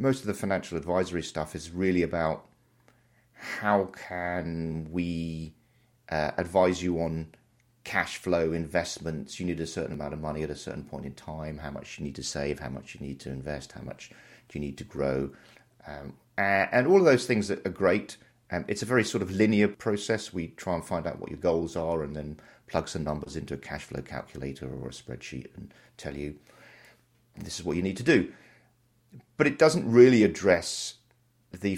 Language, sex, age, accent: English, male, 40-59, British